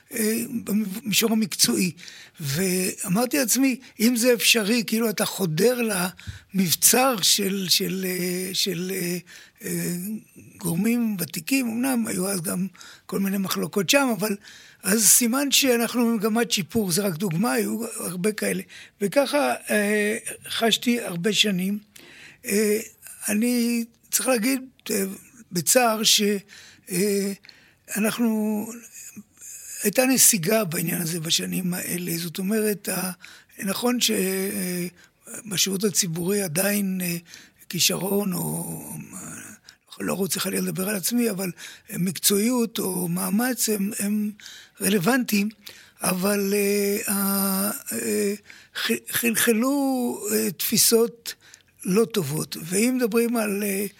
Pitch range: 190-230 Hz